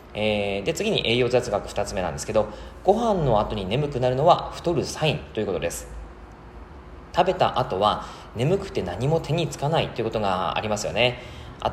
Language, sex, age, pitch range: Japanese, male, 20-39, 105-170 Hz